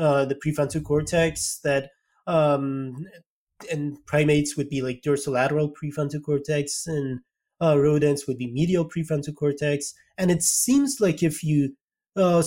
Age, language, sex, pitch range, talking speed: 30-49, English, male, 140-180 Hz, 140 wpm